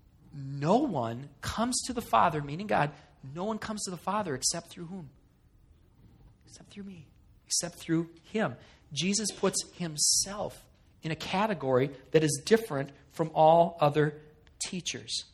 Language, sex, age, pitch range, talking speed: English, male, 40-59, 145-215 Hz, 140 wpm